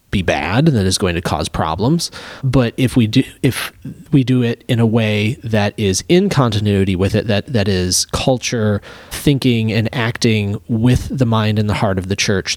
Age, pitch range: 30-49, 105-130 Hz